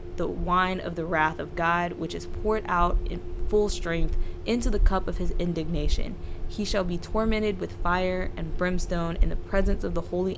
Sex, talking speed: female, 195 wpm